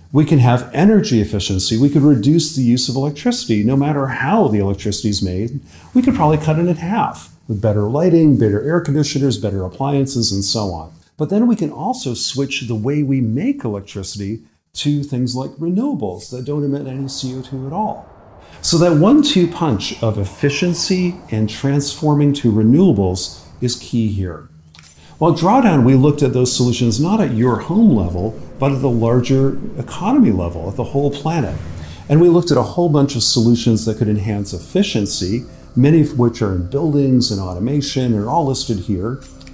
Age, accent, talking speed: 40-59, American, 185 wpm